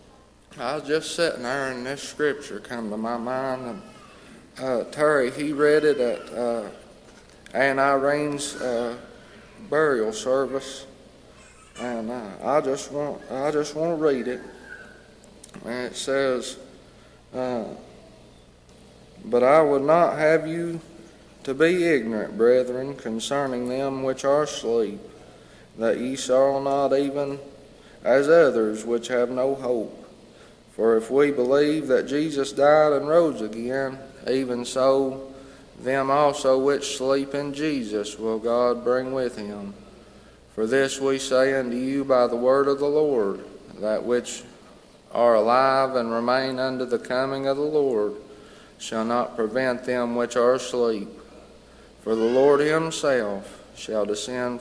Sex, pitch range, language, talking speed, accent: male, 120-140 Hz, English, 135 wpm, American